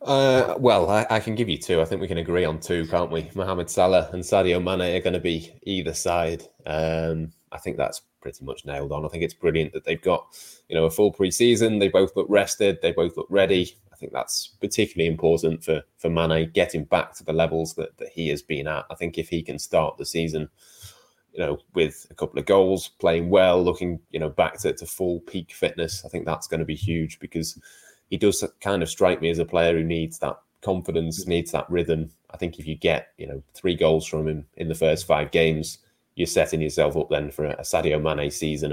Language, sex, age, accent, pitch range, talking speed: English, male, 20-39, British, 80-90 Hz, 230 wpm